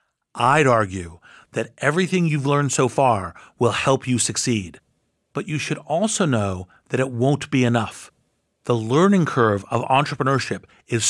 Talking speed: 150 wpm